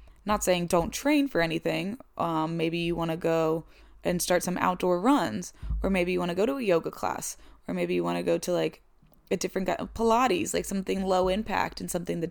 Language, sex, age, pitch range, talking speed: English, female, 20-39, 165-195 Hz, 225 wpm